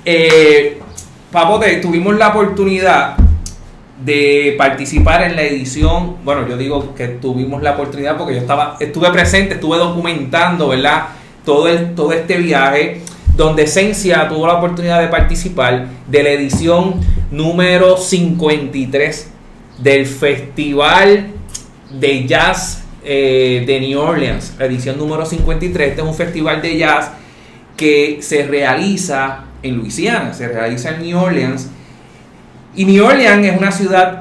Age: 30-49